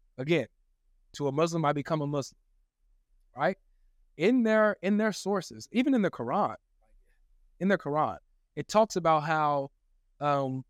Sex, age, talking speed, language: male, 20-39, 145 wpm, English